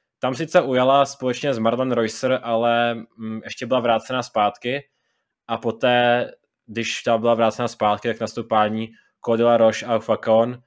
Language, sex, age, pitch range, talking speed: Czech, male, 20-39, 105-120 Hz, 140 wpm